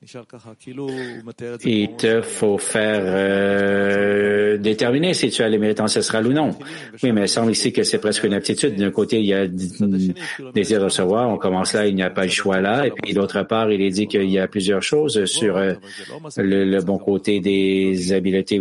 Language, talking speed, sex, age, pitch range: English, 195 wpm, male, 50-69, 95-110 Hz